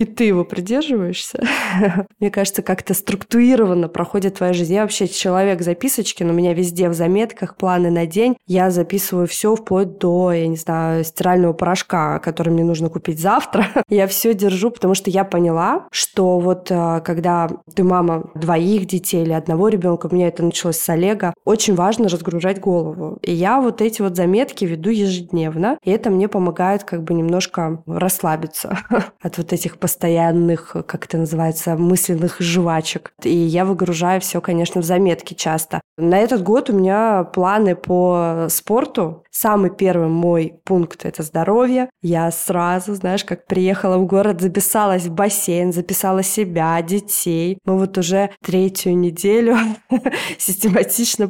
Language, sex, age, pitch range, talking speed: Russian, female, 20-39, 170-200 Hz, 155 wpm